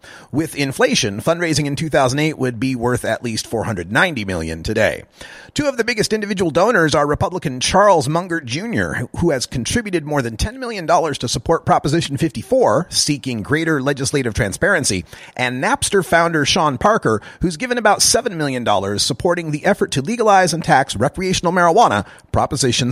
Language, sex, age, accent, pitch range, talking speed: English, male, 30-49, American, 125-170 Hz, 155 wpm